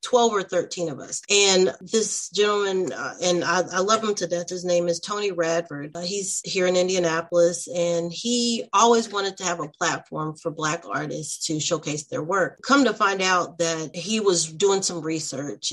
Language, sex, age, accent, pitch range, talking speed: English, female, 30-49, American, 165-205 Hz, 195 wpm